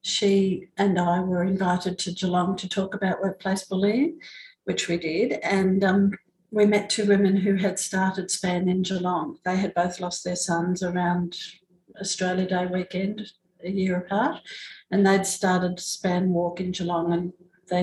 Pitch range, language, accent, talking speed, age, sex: 175-195 Hz, English, Australian, 165 wpm, 60-79, female